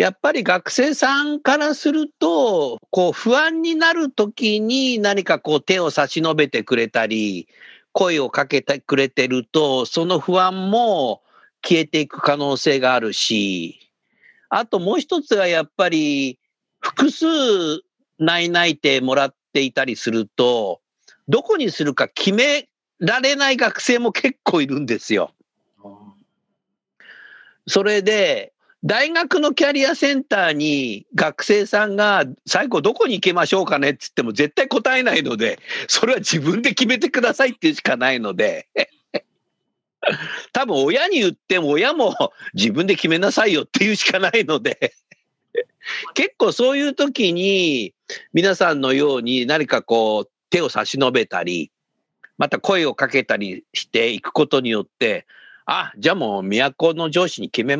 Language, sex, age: Japanese, male, 50-69